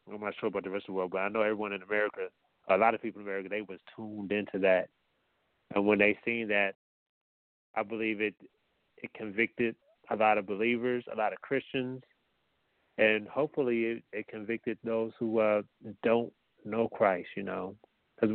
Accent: American